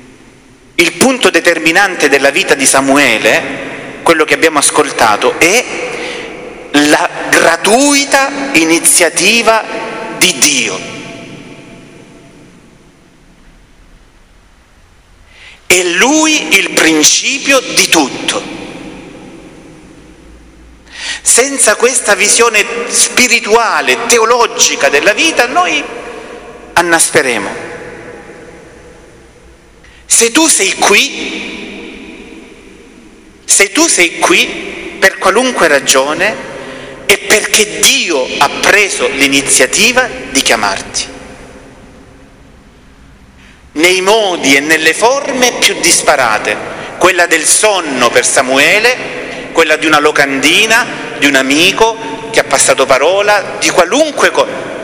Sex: male